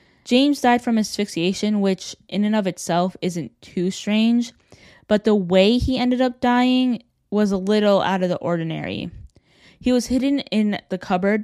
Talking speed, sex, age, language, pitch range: 170 wpm, female, 10-29, English, 180-215 Hz